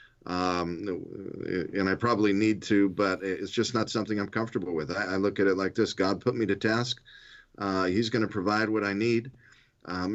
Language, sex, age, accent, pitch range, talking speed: English, male, 40-59, American, 95-115 Hz, 205 wpm